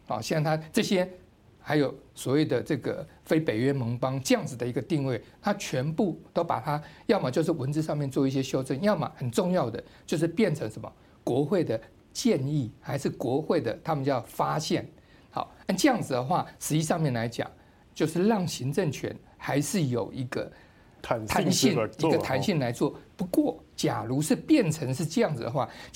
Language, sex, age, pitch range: Chinese, male, 50-69, 135-180 Hz